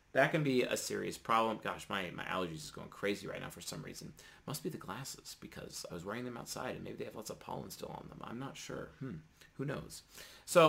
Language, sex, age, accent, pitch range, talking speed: English, male, 30-49, American, 95-125 Hz, 255 wpm